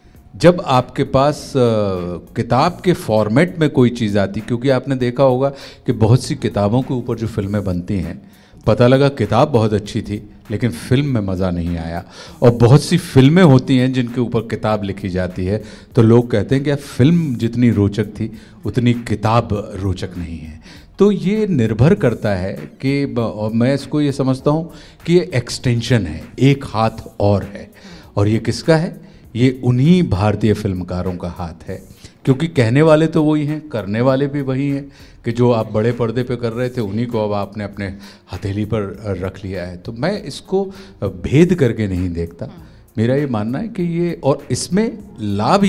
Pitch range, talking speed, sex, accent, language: 105-140 Hz, 180 wpm, male, native, Hindi